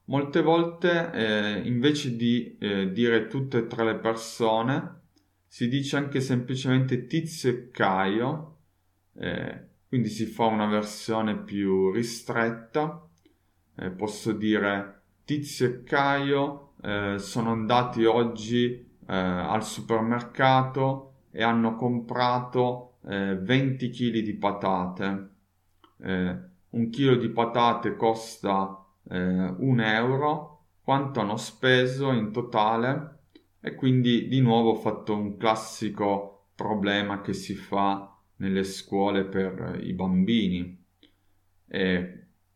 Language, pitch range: Italian, 100-135 Hz